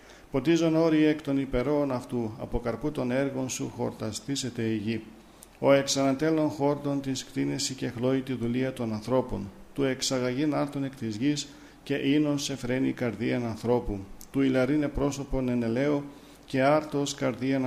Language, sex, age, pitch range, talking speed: Greek, male, 50-69, 120-145 Hz, 145 wpm